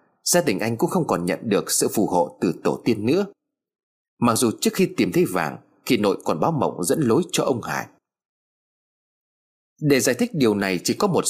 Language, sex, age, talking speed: Vietnamese, male, 30-49, 210 wpm